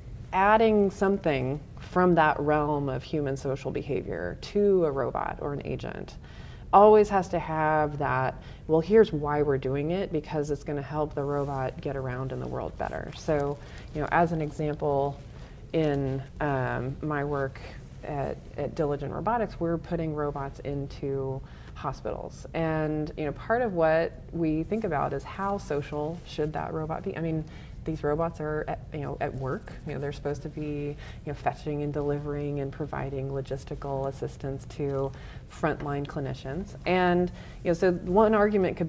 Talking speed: 170 wpm